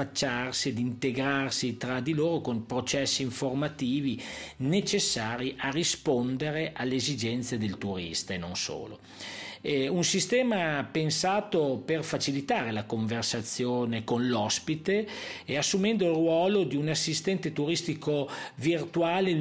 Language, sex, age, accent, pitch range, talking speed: Italian, male, 40-59, native, 120-170 Hz, 110 wpm